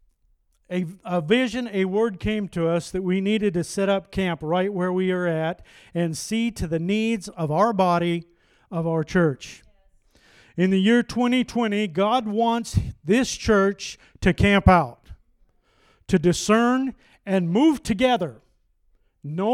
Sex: male